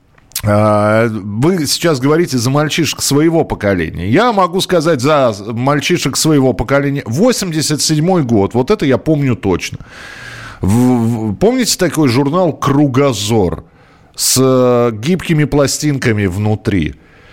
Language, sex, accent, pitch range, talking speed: Russian, male, native, 105-150 Hz, 100 wpm